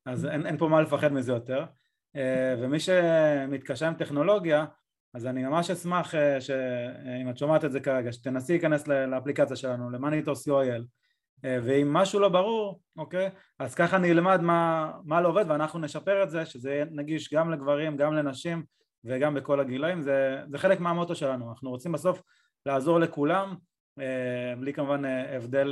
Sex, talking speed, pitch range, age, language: male, 175 wpm, 130-160 Hz, 20-39, Hebrew